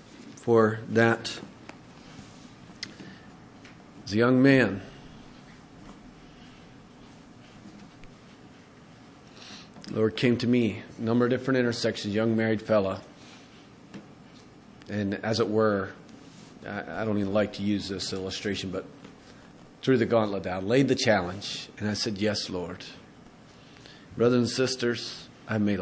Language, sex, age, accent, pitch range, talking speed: English, male, 40-59, American, 100-120 Hz, 115 wpm